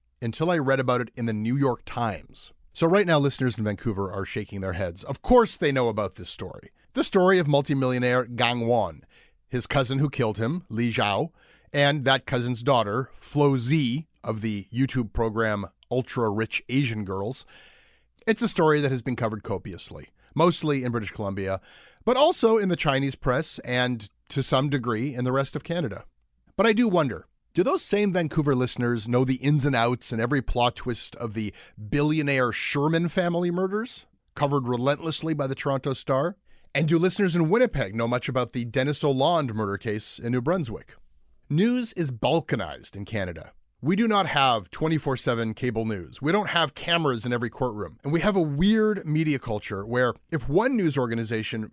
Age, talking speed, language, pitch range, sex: 30-49, 185 wpm, English, 115-155 Hz, male